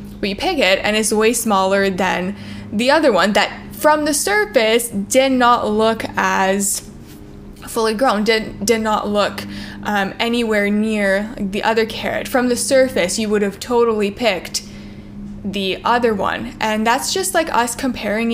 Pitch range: 200-240 Hz